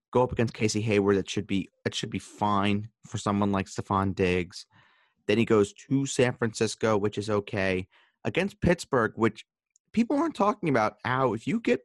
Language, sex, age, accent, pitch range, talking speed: English, male, 30-49, American, 85-110 Hz, 185 wpm